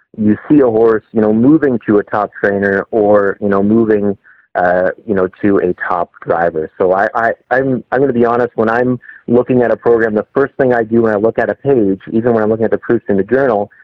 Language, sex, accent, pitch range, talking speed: English, male, American, 100-125 Hz, 250 wpm